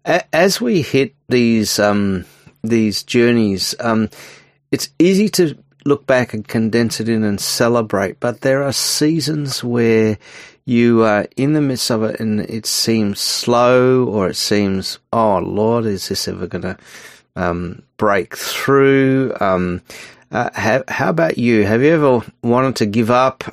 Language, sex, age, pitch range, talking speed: English, male, 40-59, 105-125 Hz, 155 wpm